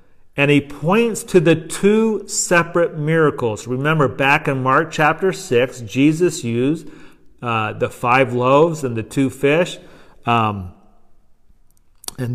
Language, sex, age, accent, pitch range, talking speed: English, male, 40-59, American, 130-185 Hz, 125 wpm